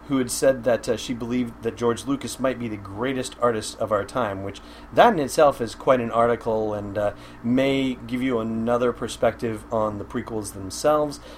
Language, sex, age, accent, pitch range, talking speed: English, male, 30-49, American, 110-140 Hz, 195 wpm